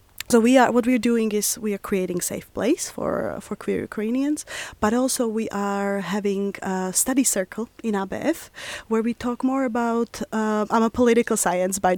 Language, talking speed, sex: Swedish, 190 wpm, female